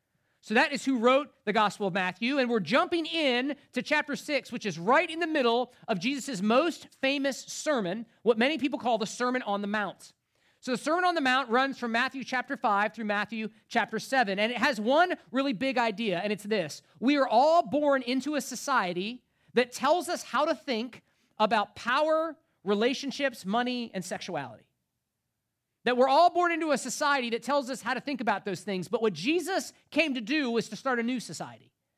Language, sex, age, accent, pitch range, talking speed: English, male, 40-59, American, 210-275 Hz, 205 wpm